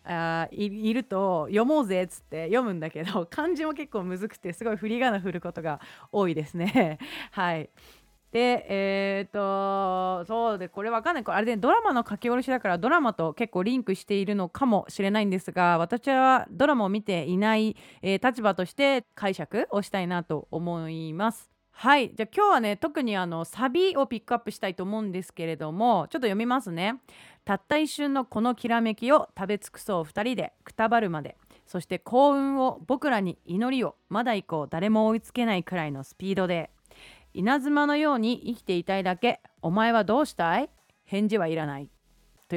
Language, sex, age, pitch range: Japanese, female, 30-49, 175-250 Hz